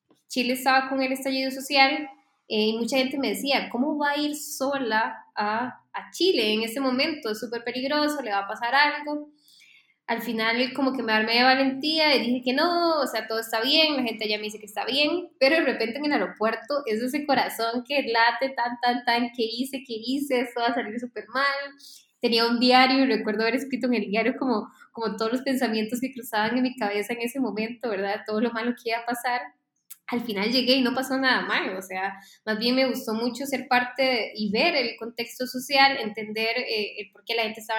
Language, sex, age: Spanish, female, 10-29